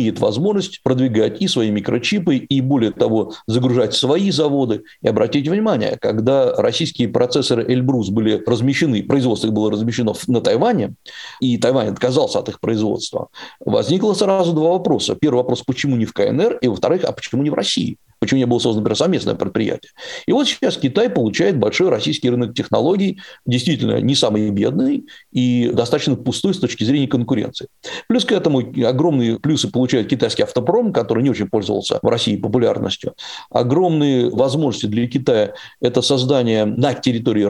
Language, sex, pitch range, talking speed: Russian, male, 120-155 Hz, 155 wpm